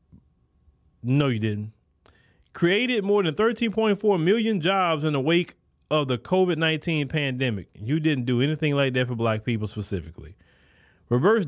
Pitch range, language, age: 120-180 Hz, English, 30-49